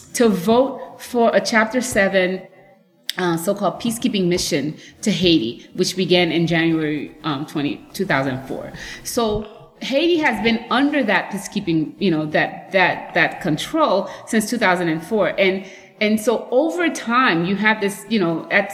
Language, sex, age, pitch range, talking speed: English, female, 30-49, 175-220 Hz, 145 wpm